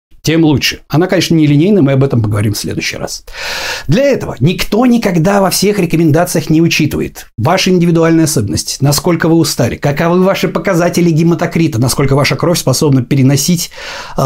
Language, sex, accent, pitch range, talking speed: Russian, male, native, 130-180 Hz, 150 wpm